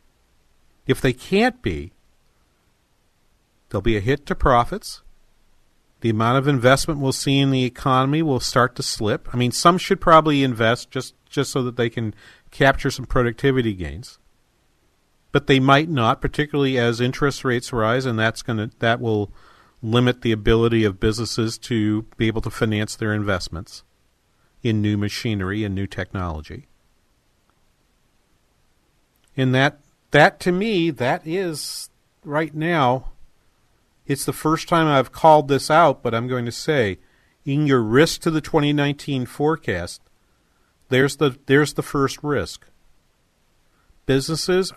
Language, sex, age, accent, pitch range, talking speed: English, male, 50-69, American, 115-150 Hz, 145 wpm